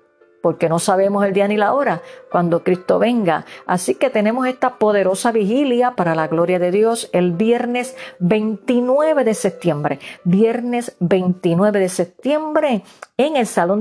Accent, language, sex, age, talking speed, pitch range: American, Spanish, female, 50-69, 150 wpm, 180-245 Hz